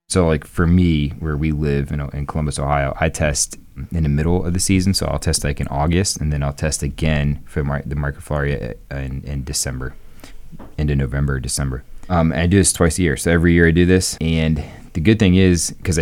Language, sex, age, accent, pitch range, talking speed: English, male, 20-39, American, 70-85 Hz, 230 wpm